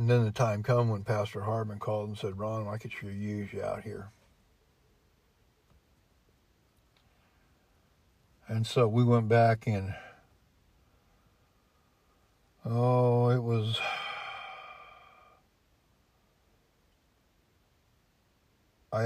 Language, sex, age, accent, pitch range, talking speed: English, male, 60-79, American, 100-115 Hz, 90 wpm